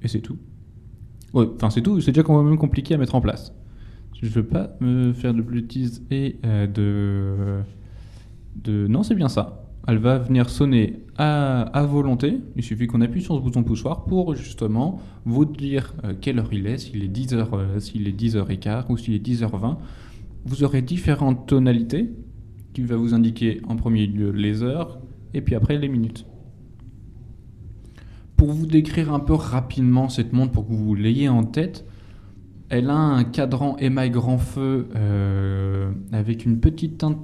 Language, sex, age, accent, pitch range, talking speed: French, male, 20-39, French, 105-130 Hz, 175 wpm